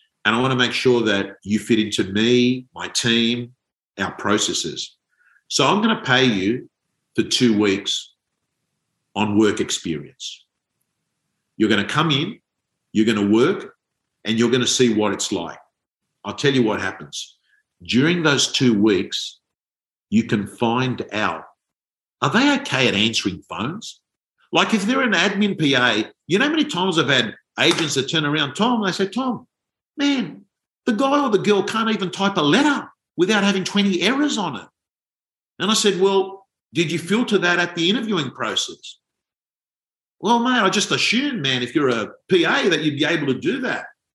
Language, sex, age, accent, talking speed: English, male, 50-69, Australian, 175 wpm